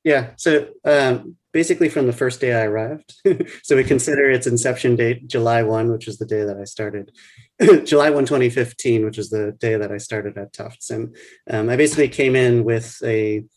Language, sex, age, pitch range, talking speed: English, male, 30-49, 105-125 Hz, 200 wpm